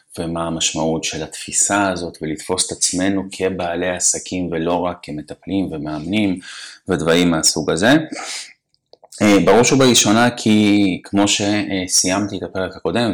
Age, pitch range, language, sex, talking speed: 30-49, 80-95 Hz, Hebrew, male, 115 wpm